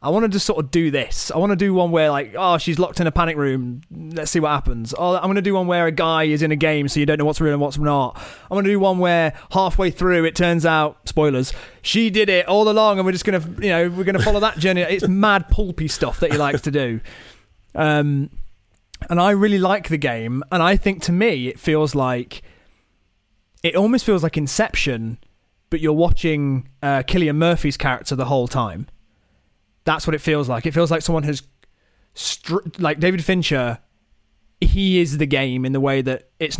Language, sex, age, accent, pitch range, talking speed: English, male, 30-49, British, 130-170 Hz, 230 wpm